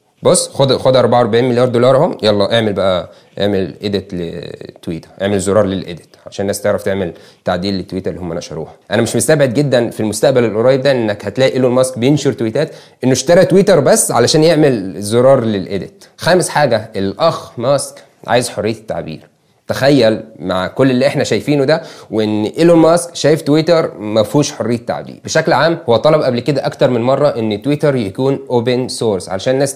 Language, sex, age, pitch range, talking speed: Arabic, male, 20-39, 110-145 Hz, 170 wpm